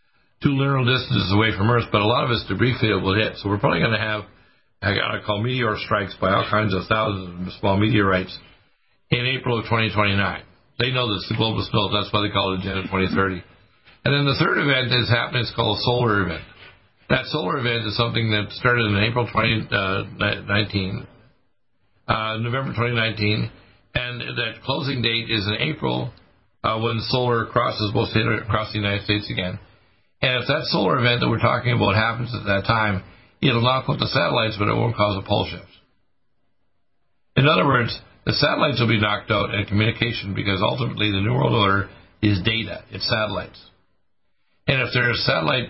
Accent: American